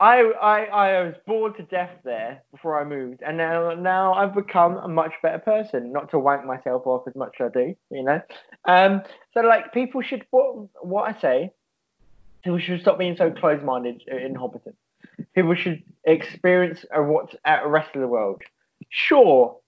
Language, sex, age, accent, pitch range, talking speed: English, male, 20-39, British, 150-200 Hz, 185 wpm